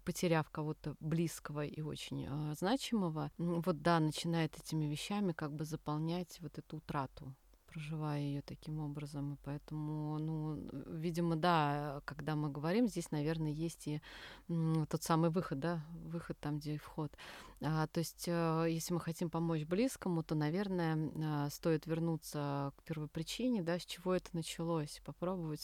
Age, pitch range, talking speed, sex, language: 30-49, 150-175 Hz, 155 wpm, female, Russian